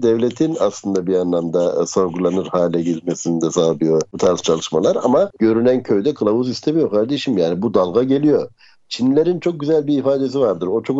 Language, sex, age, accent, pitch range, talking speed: Turkish, male, 60-79, native, 105-145 Hz, 170 wpm